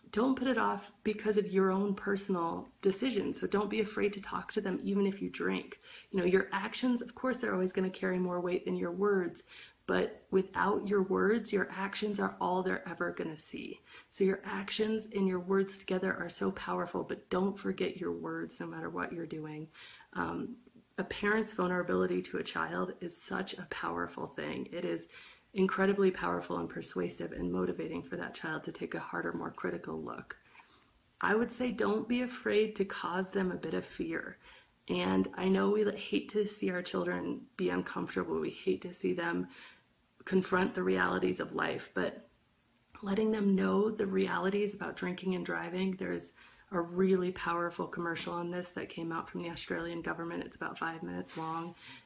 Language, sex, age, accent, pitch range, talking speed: English, female, 30-49, American, 140-205 Hz, 185 wpm